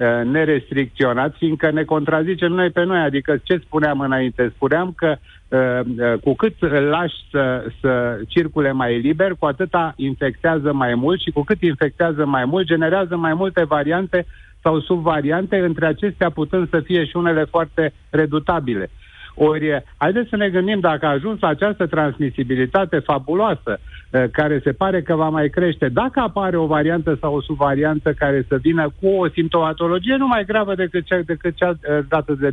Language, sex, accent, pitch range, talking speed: Romanian, male, native, 140-170 Hz, 165 wpm